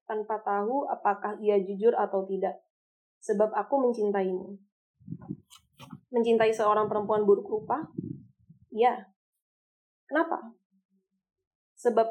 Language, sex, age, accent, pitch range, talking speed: Indonesian, female, 20-39, native, 200-230 Hz, 90 wpm